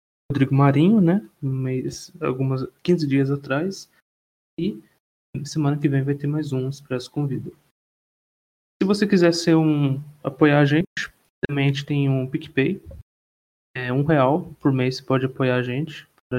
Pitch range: 125-145 Hz